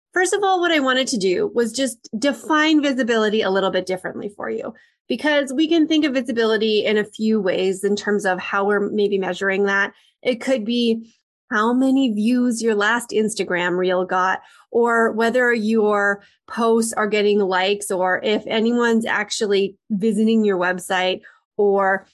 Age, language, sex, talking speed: 30-49, English, female, 170 wpm